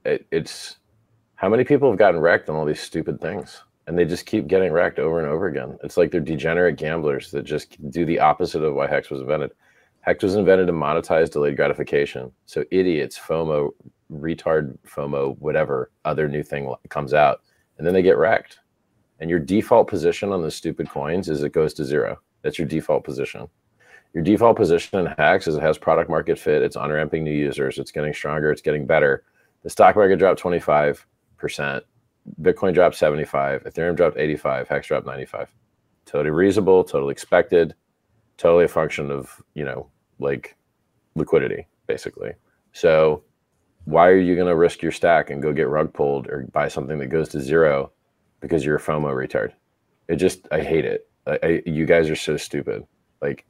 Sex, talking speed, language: male, 185 wpm, English